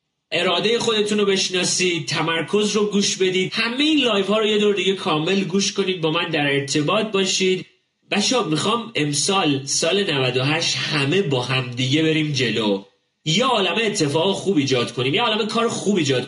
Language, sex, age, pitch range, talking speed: Persian, male, 30-49, 150-205 Hz, 165 wpm